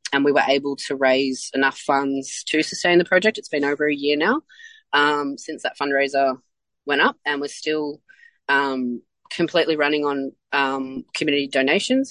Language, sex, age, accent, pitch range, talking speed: English, female, 20-39, Australian, 135-165 Hz, 165 wpm